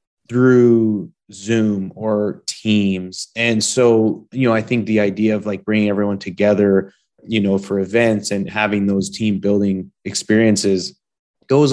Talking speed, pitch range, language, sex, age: 145 wpm, 100-115 Hz, English, male, 30-49